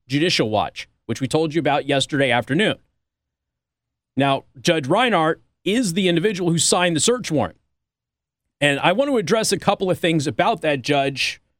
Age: 30-49